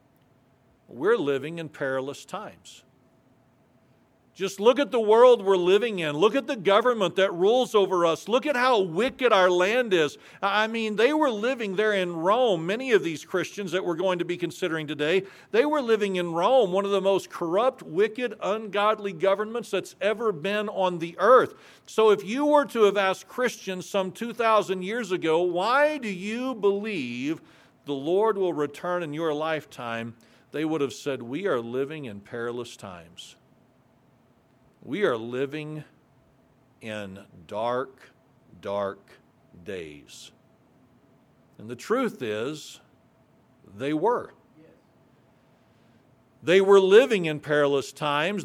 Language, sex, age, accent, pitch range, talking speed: English, male, 50-69, American, 145-215 Hz, 145 wpm